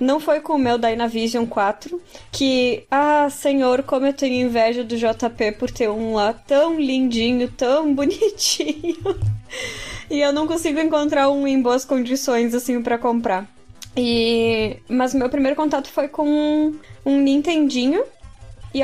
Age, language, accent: 10-29, Portuguese, Brazilian